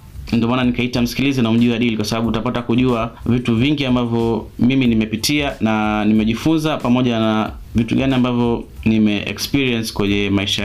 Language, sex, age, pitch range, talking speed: Swahili, male, 30-49, 105-125 Hz, 145 wpm